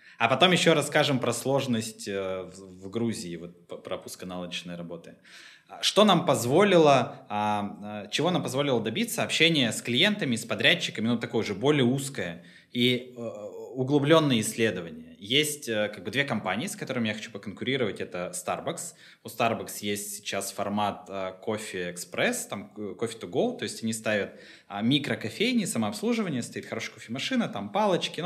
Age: 20-39